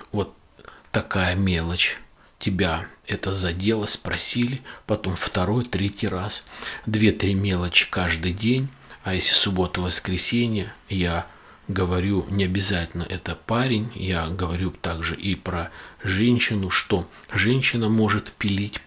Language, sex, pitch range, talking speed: Russian, male, 90-105 Hz, 110 wpm